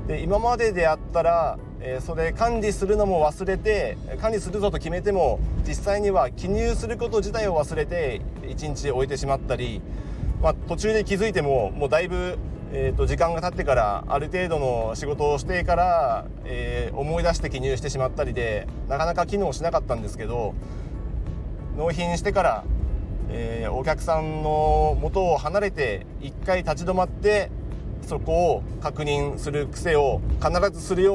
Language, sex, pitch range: Japanese, male, 130-185 Hz